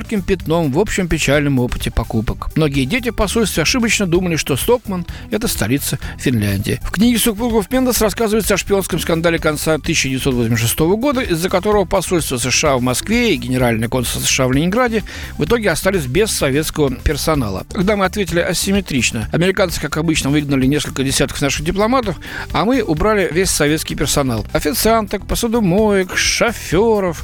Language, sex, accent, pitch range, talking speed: Russian, male, native, 130-195 Hz, 145 wpm